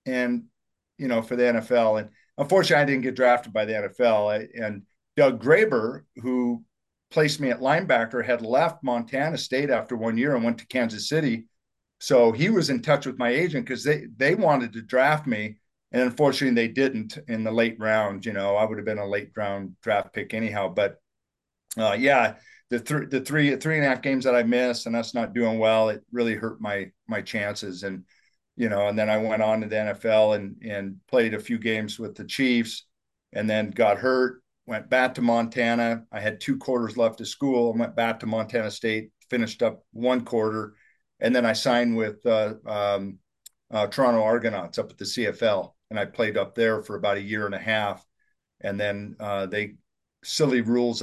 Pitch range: 105-125 Hz